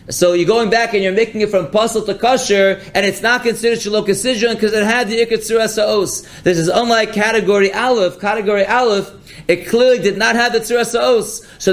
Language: English